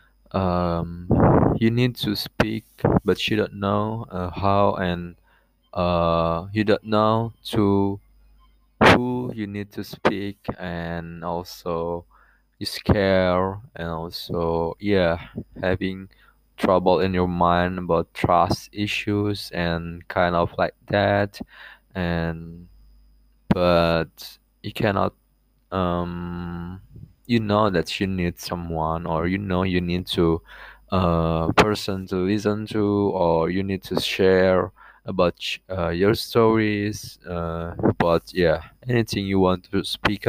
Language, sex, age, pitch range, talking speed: Indonesian, male, 20-39, 85-105 Hz, 120 wpm